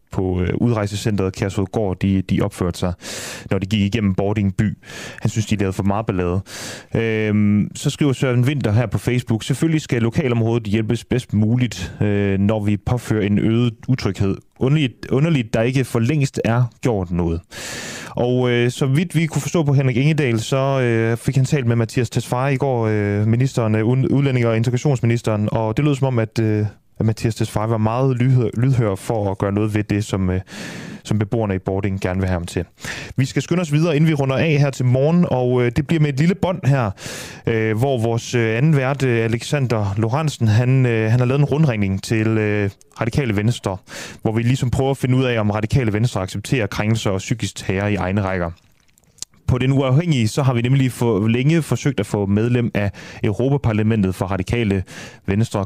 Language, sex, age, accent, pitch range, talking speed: Danish, male, 30-49, native, 105-130 Hz, 185 wpm